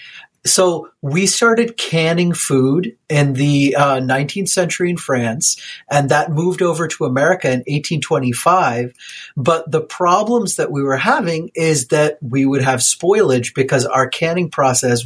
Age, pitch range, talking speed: 30-49, 135-180 Hz, 145 wpm